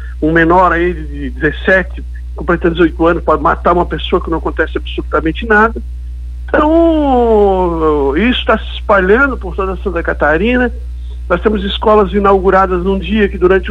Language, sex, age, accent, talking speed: Portuguese, male, 60-79, Brazilian, 155 wpm